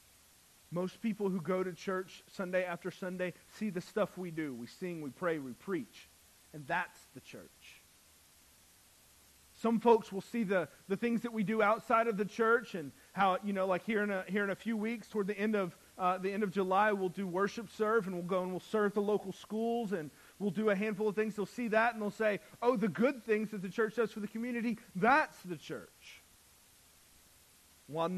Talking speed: 205 wpm